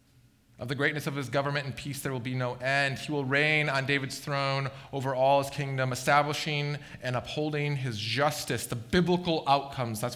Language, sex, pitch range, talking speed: English, male, 120-170 Hz, 190 wpm